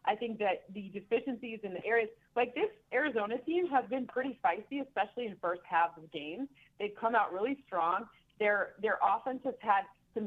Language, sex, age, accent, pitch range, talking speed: English, female, 40-59, American, 195-255 Hz, 205 wpm